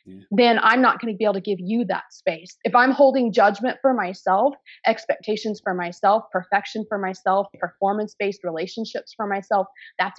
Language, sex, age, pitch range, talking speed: English, female, 30-49, 190-230 Hz, 170 wpm